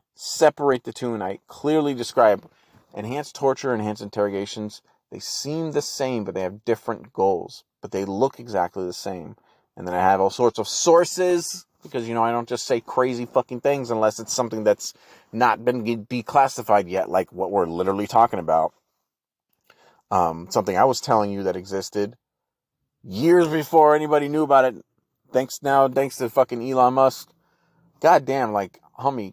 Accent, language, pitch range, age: American, English, 105-145 Hz, 30-49